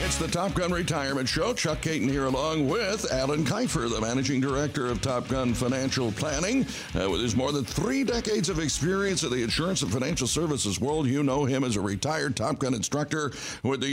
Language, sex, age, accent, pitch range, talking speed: English, male, 60-79, American, 120-155 Hz, 205 wpm